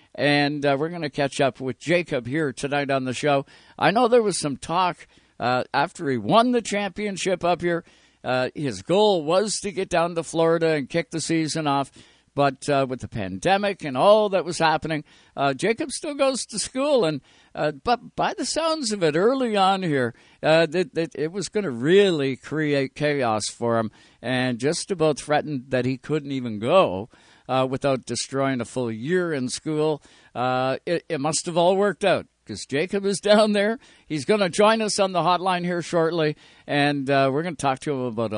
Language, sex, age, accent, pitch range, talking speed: English, male, 60-79, American, 140-180 Hz, 205 wpm